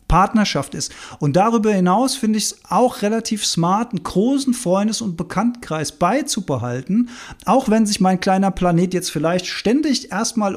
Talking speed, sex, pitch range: 155 wpm, male, 165-220 Hz